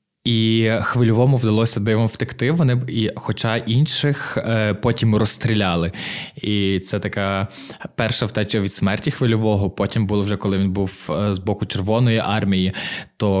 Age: 20-39